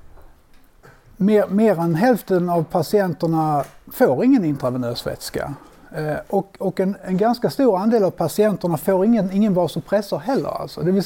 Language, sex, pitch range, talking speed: Swedish, male, 155-200 Hz, 140 wpm